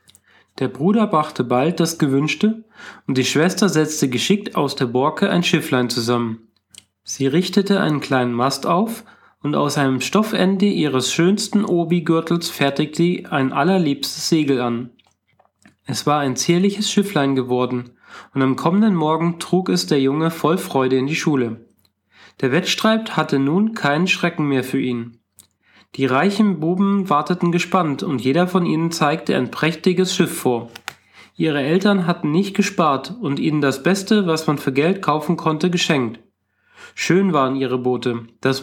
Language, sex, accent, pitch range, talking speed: German, male, German, 130-180 Hz, 155 wpm